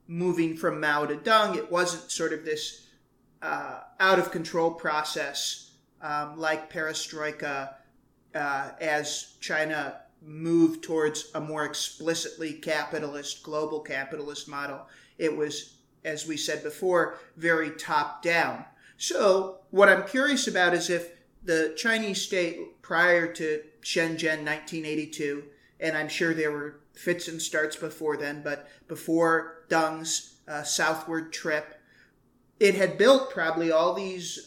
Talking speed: 125 wpm